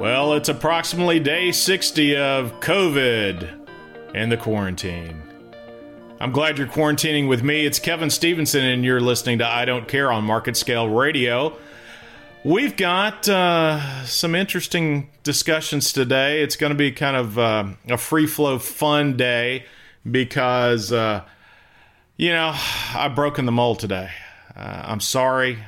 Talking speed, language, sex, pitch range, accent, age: 145 wpm, English, male, 120-150 Hz, American, 40-59